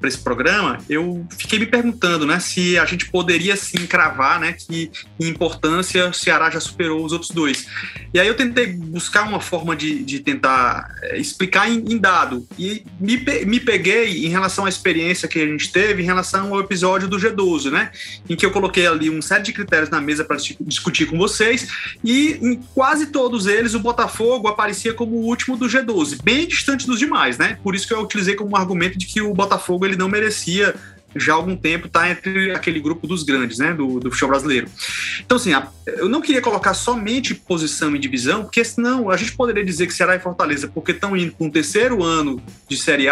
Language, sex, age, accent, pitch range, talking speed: Portuguese, male, 30-49, Brazilian, 165-230 Hz, 210 wpm